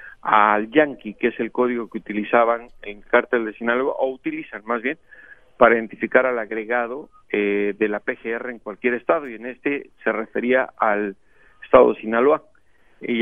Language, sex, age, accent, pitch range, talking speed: Spanish, male, 50-69, Mexican, 110-140 Hz, 175 wpm